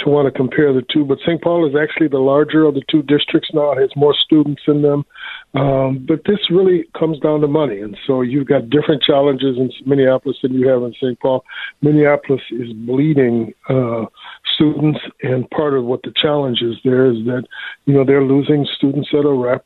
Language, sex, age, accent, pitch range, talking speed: English, male, 60-79, American, 125-145 Hz, 210 wpm